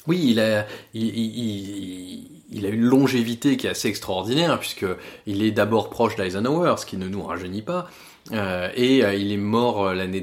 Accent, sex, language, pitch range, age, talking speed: French, male, French, 105-130 Hz, 20-39, 190 wpm